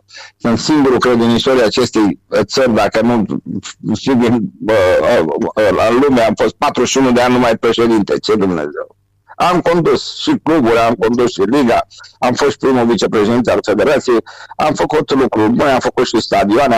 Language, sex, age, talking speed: Romanian, male, 50-69, 150 wpm